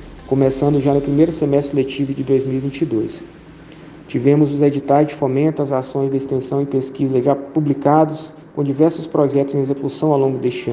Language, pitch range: Portuguese, 135-150 Hz